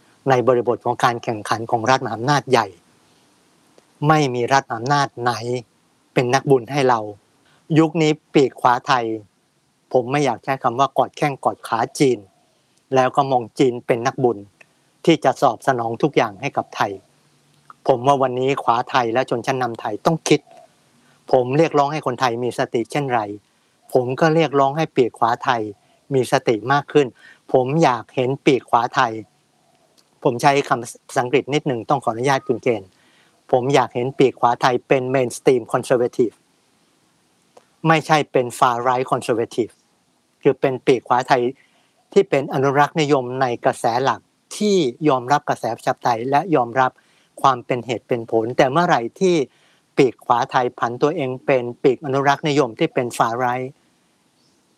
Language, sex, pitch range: Thai, male, 120-145 Hz